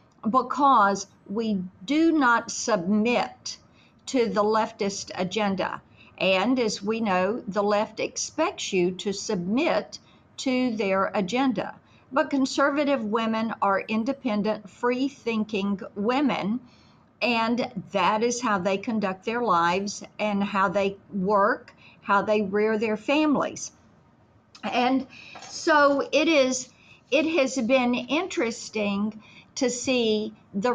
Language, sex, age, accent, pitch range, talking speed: English, female, 50-69, American, 205-260 Hz, 110 wpm